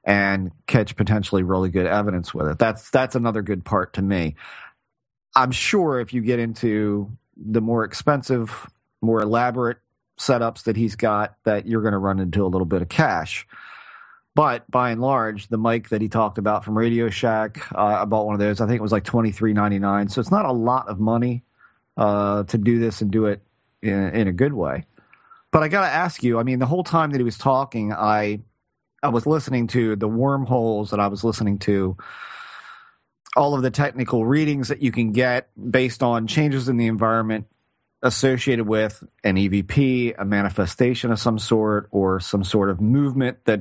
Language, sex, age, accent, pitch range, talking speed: English, male, 40-59, American, 105-130 Hz, 200 wpm